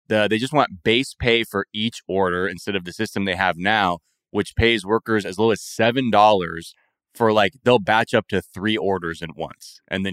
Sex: male